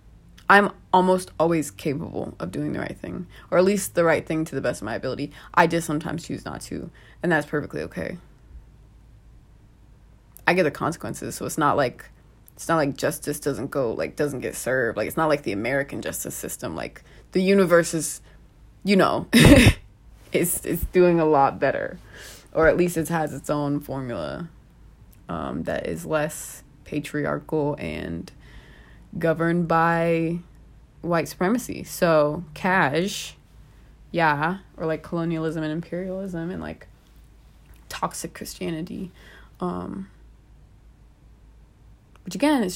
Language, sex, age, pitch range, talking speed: English, female, 20-39, 150-185 Hz, 145 wpm